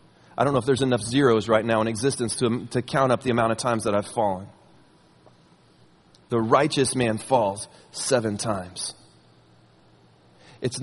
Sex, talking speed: male, 160 wpm